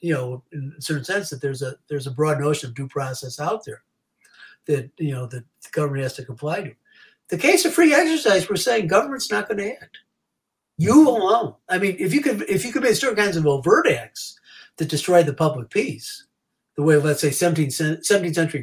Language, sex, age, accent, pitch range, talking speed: English, male, 60-79, American, 145-200 Hz, 220 wpm